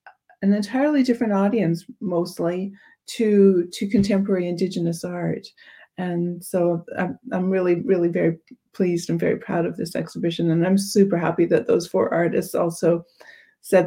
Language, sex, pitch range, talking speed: French, female, 175-210 Hz, 145 wpm